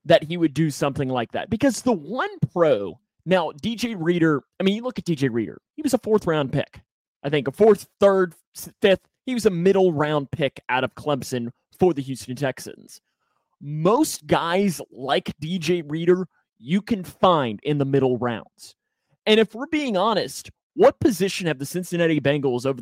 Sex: male